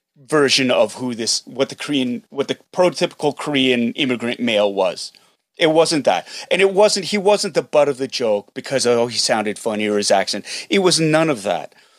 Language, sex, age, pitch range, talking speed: English, male, 30-49, 130-165 Hz, 200 wpm